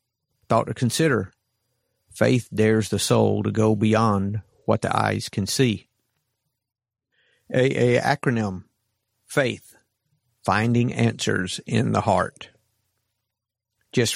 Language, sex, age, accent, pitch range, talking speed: English, male, 50-69, American, 105-120 Hz, 105 wpm